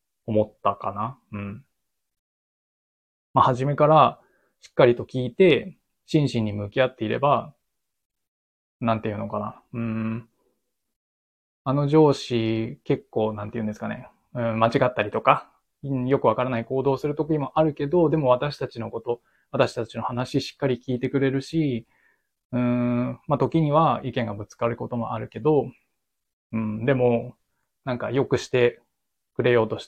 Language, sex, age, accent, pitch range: Japanese, male, 20-39, native, 110-135 Hz